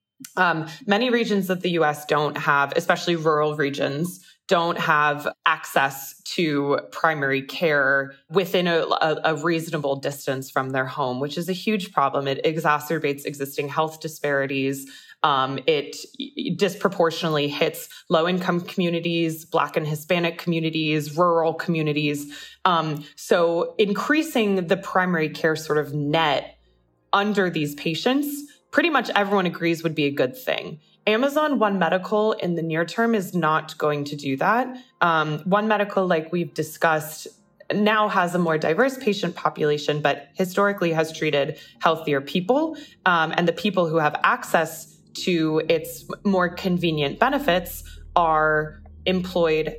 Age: 20-39